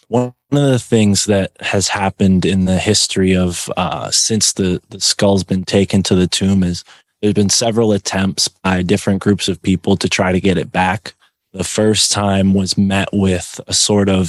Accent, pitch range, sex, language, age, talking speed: American, 95-110 Hz, male, English, 20-39, 195 wpm